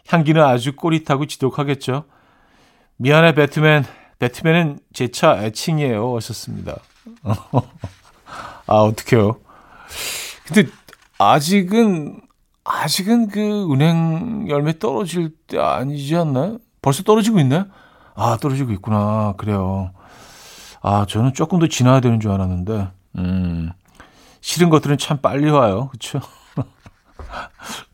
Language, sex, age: Korean, male, 50-69